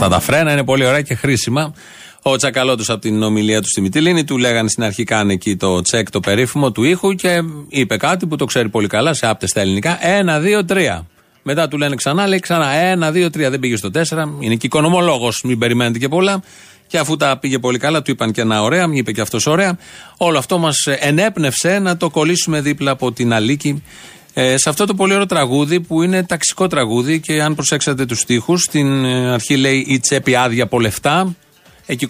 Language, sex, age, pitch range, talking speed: Greek, male, 30-49, 120-165 Hz, 210 wpm